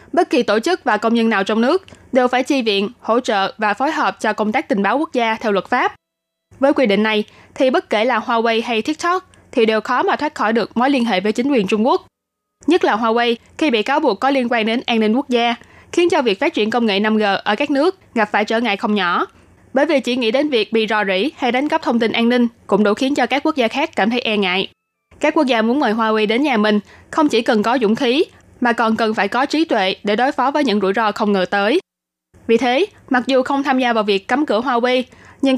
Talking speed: 270 wpm